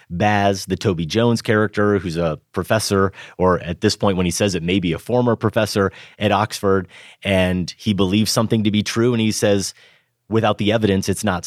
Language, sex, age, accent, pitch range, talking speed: English, male, 30-49, American, 90-115 Hz, 200 wpm